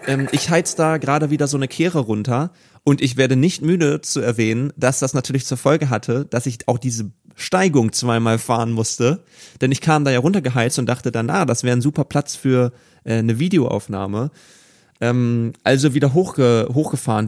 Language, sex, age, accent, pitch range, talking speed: German, male, 30-49, German, 120-145 Hz, 190 wpm